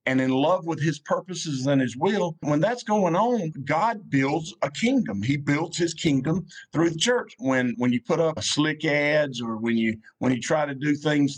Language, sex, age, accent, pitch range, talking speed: English, male, 50-69, American, 115-160 Hz, 210 wpm